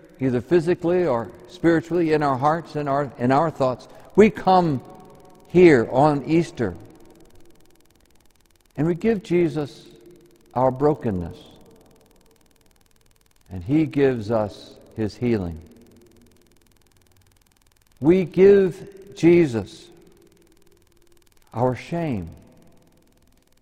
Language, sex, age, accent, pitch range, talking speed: English, male, 60-79, American, 110-170 Hz, 85 wpm